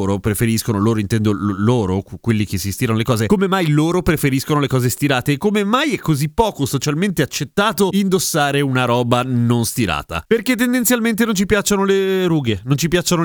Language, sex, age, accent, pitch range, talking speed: Italian, male, 30-49, native, 125-175 Hz, 185 wpm